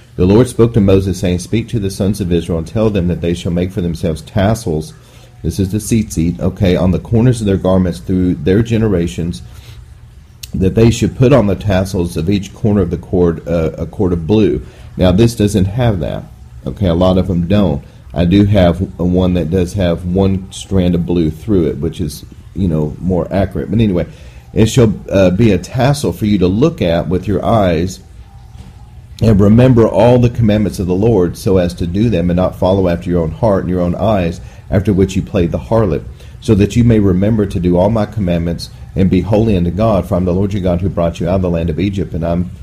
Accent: American